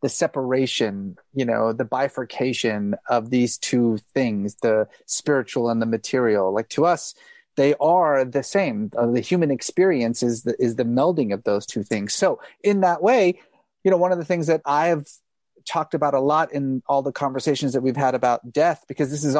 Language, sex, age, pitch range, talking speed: English, male, 30-49, 120-160 Hz, 195 wpm